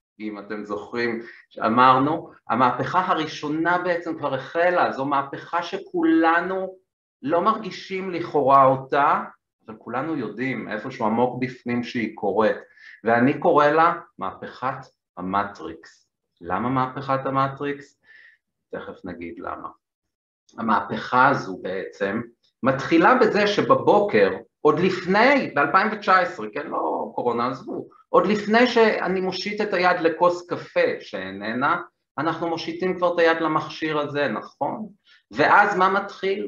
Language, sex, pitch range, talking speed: Hebrew, male, 155-225 Hz, 110 wpm